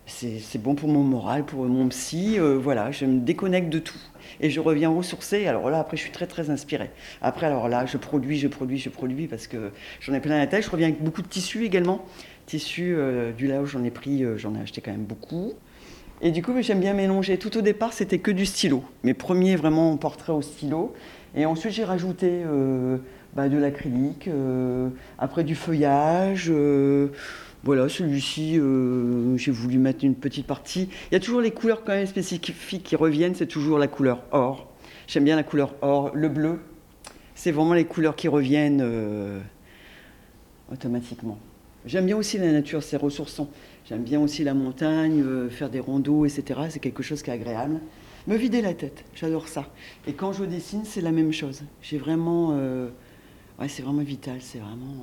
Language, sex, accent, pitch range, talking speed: French, female, French, 130-165 Hz, 200 wpm